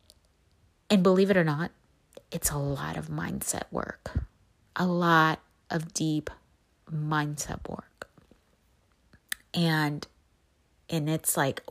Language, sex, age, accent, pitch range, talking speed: English, female, 30-49, American, 150-200 Hz, 110 wpm